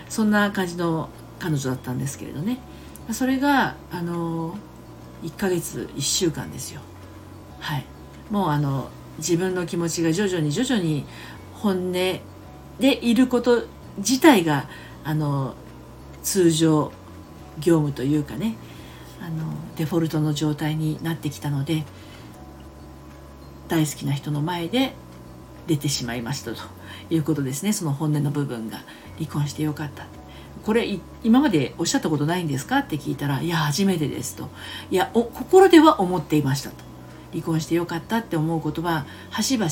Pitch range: 140-190 Hz